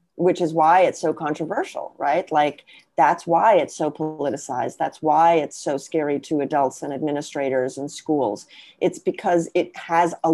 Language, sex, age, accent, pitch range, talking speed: English, female, 40-59, American, 150-180 Hz, 170 wpm